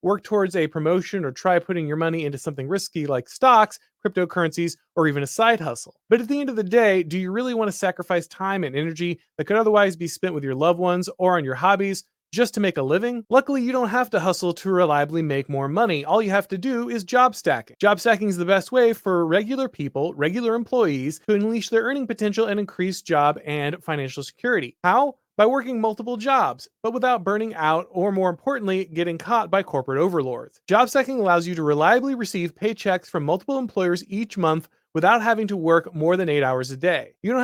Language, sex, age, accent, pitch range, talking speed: English, male, 30-49, American, 165-225 Hz, 220 wpm